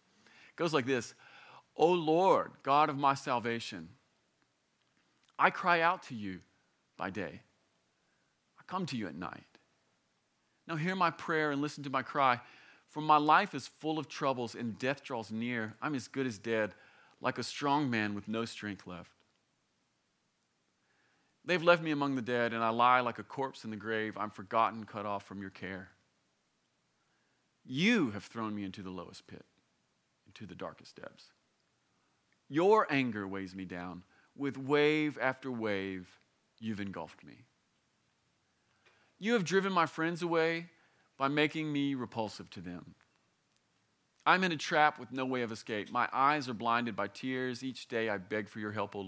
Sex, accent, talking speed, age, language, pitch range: male, American, 170 wpm, 40-59, English, 105-140 Hz